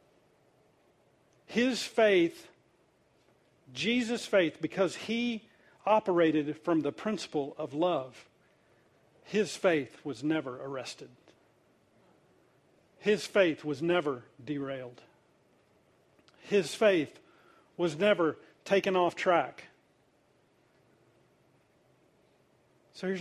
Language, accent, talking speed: English, American, 80 wpm